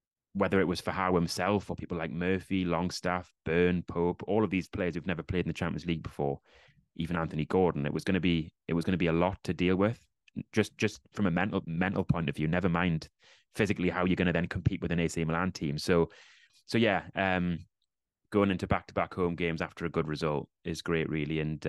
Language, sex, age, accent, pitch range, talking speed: English, male, 30-49, British, 80-95 Hz, 220 wpm